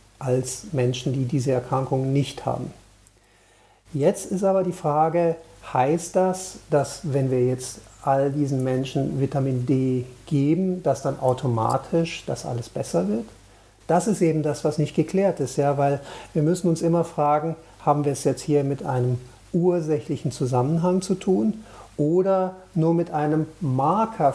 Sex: male